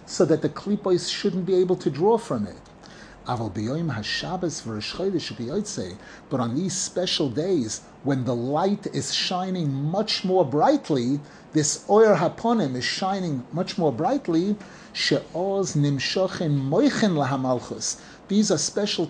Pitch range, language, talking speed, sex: 150-200 Hz, English, 110 wpm, male